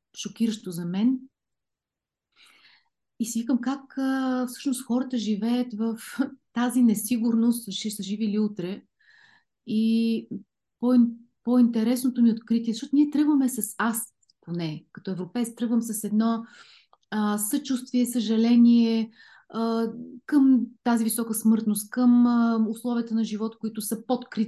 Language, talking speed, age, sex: Bulgarian, 125 wpm, 30-49, female